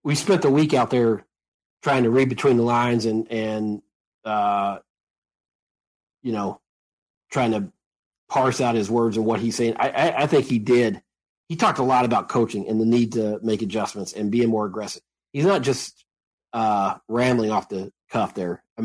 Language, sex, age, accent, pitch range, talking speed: English, male, 40-59, American, 110-130 Hz, 190 wpm